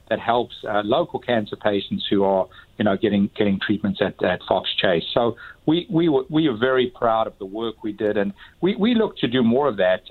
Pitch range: 100-125 Hz